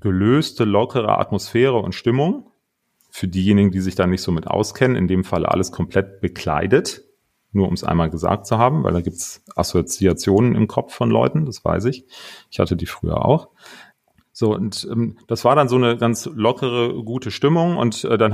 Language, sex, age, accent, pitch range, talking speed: German, male, 30-49, German, 100-120 Hz, 195 wpm